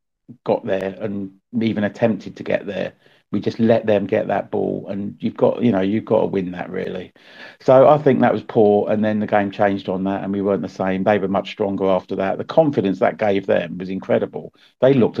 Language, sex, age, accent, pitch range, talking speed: English, male, 40-59, British, 100-120 Hz, 235 wpm